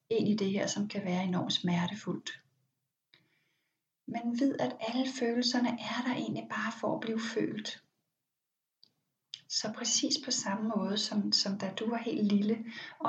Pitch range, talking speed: 200-245 Hz, 160 wpm